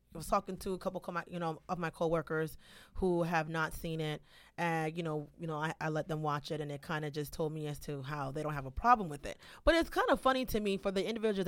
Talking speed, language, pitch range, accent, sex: 300 wpm, English, 155-195 Hz, American, female